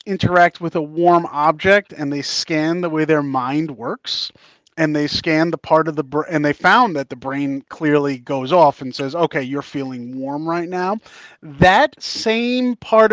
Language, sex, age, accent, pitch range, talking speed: English, male, 30-49, American, 150-210 Hz, 185 wpm